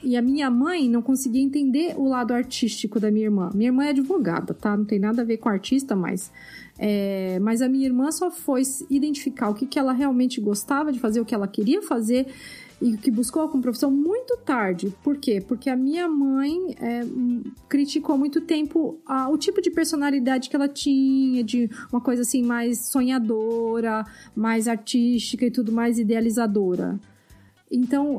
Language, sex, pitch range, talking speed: Portuguese, female, 230-285 Hz, 180 wpm